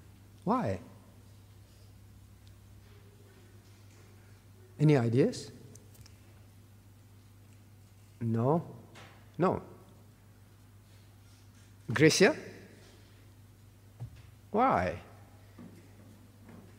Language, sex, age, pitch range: English, male, 50-69, 105-145 Hz